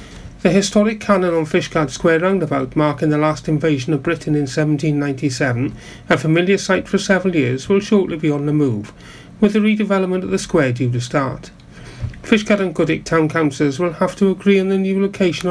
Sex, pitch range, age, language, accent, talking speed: male, 150-190 Hz, 40-59, English, British, 190 wpm